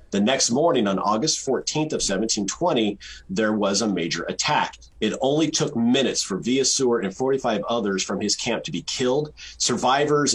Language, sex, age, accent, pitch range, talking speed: English, male, 30-49, American, 100-130 Hz, 170 wpm